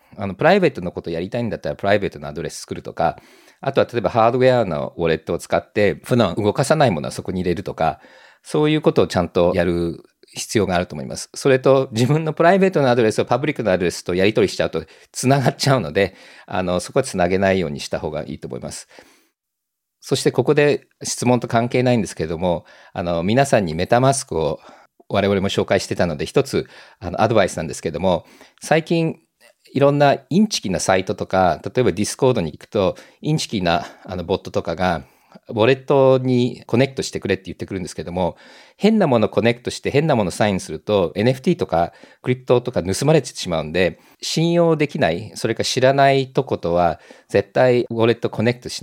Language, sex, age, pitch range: Japanese, male, 50-69, 100-150 Hz